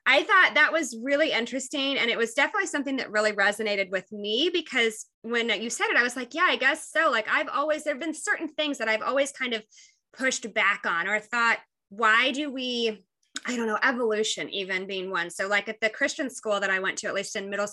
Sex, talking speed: female, 235 wpm